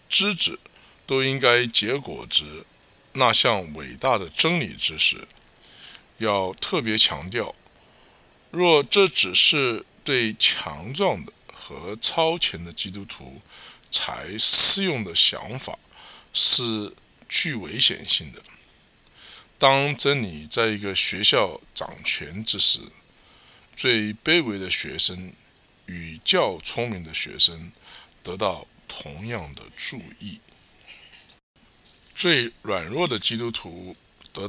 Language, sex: English, male